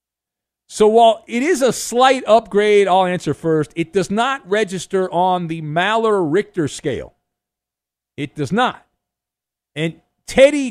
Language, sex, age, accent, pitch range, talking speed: English, male, 50-69, American, 160-230 Hz, 130 wpm